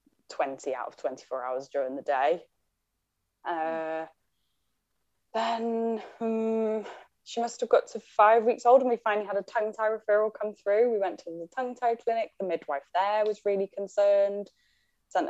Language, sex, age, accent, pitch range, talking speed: English, female, 10-29, British, 150-215 Hz, 160 wpm